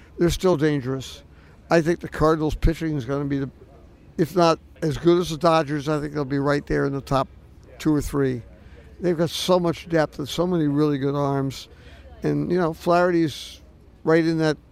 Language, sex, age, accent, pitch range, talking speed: English, male, 60-79, American, 135-160 Hz, 205 wpm